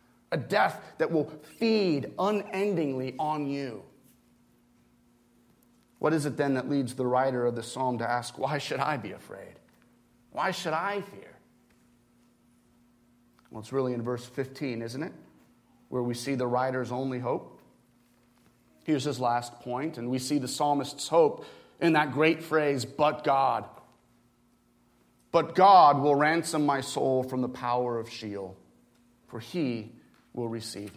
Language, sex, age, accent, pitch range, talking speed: English, male, 30-49, American, 120-180 Hz, 145 wpm